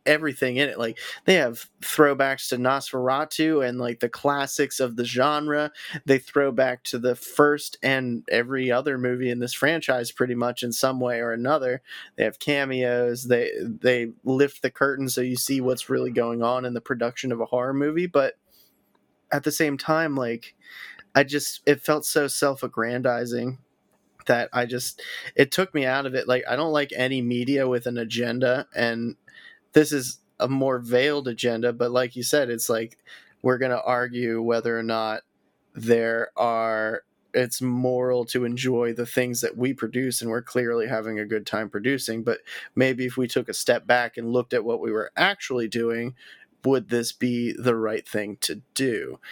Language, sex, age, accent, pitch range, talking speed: English, male, 20-39, American, 120-135 Hz, 185 wpm